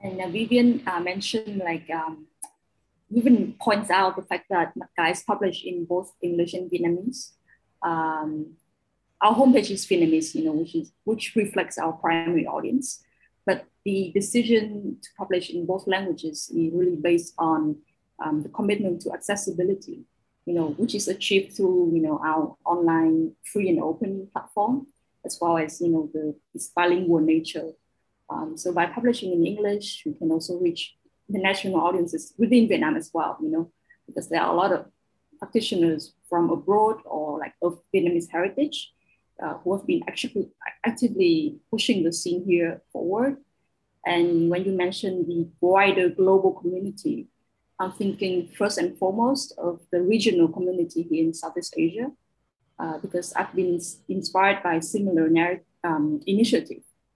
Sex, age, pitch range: female, 20-39, 170-220 Hz